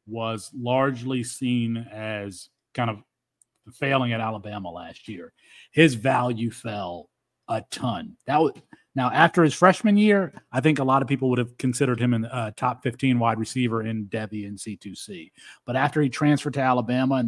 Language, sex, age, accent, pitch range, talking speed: English, male, 40-59, American, 125-165 Hz, 175 wpm